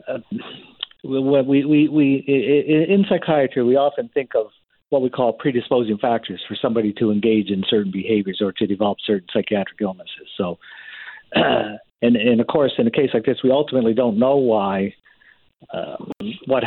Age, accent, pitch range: 50-69, American, 110-130 Hz